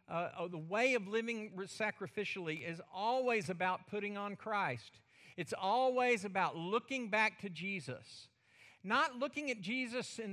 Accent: American